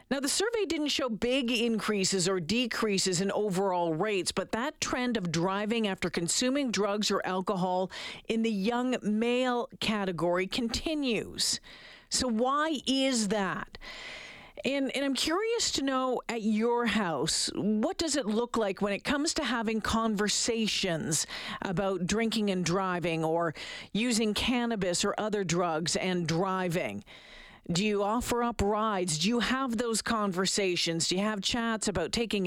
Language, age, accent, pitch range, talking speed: English, 50-69, American, 190-245 Hz, 150 wpm